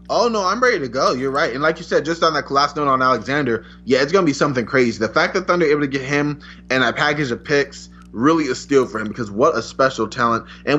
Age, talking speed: 20-39, 280 wpm